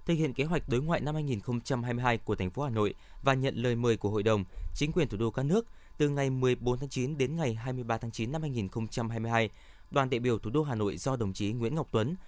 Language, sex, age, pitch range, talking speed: Vietnamese, male, 20-39, 110-145 Hz, 250 wpm